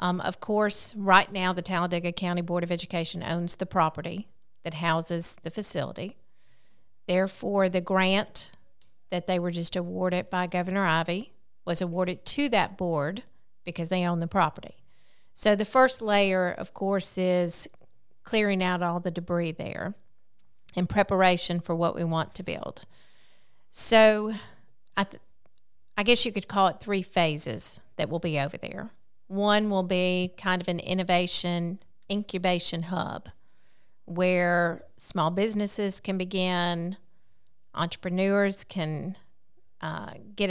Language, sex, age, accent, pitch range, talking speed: English, female, 40-59, American, 170-195 Hz, 140 wpm